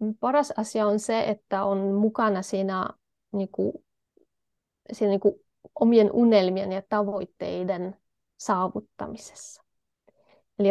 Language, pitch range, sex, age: Finnish, 195-225 Hz, female, 20-39